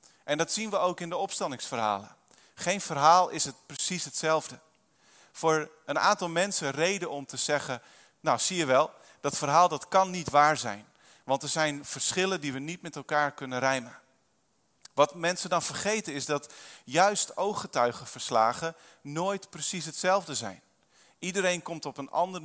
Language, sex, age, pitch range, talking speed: Dutch, male, 40-59, 135-175 Hz, 165 wpm